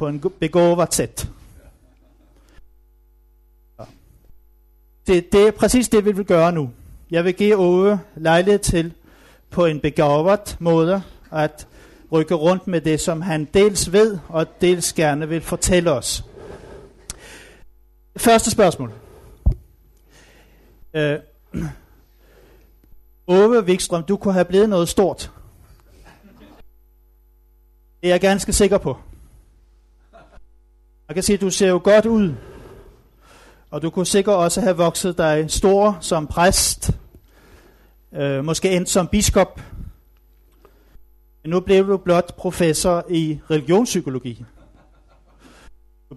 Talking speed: 115 wpm